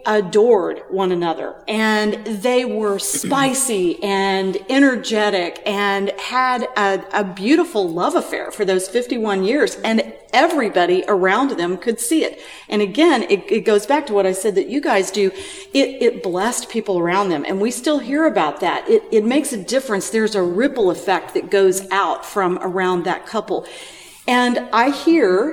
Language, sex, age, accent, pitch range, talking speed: English, female, 40-59, American, 190-255 Hz, 170 wpm